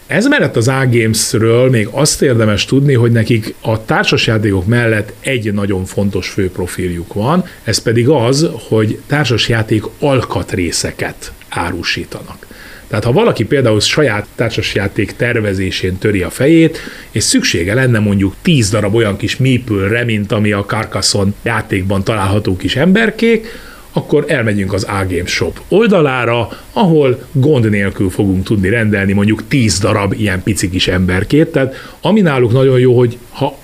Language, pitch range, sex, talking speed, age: Hungarian, 100-140 Hz, male, 135 wpm, 30-49